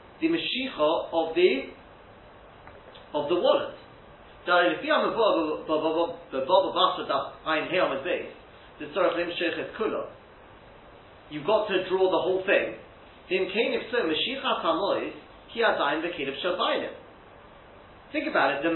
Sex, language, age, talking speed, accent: male, English, 40-59, 55 wpm, British